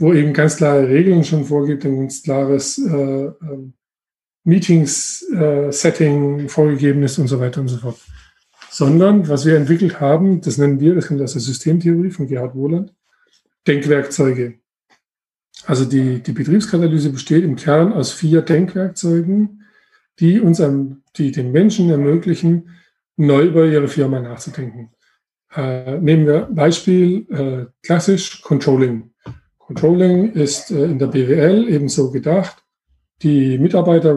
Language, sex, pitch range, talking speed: German, male, 140-175 Hz, 135 wpm